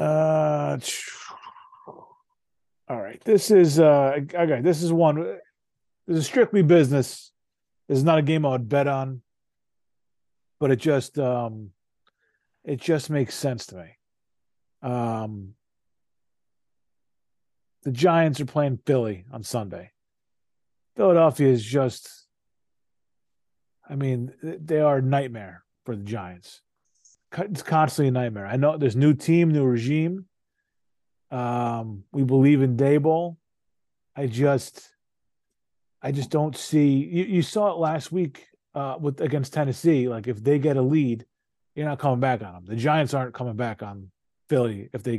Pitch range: 120-160 Hz